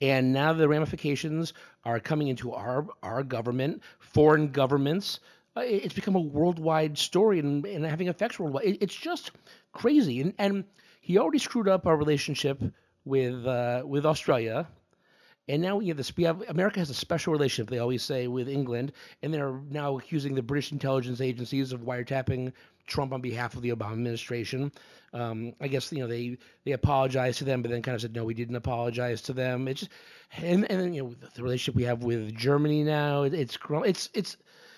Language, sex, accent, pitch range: English, male, American, 125-175 Hz